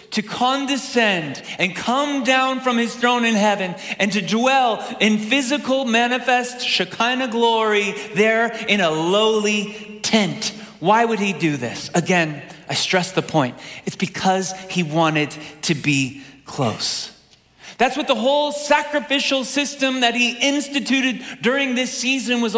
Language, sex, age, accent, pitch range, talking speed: English, male, 30-49, American, 180-255 Hz, 140 wpm